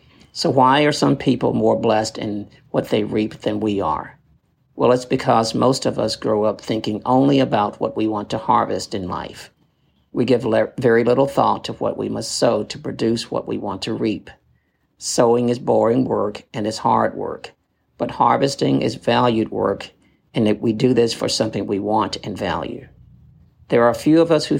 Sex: male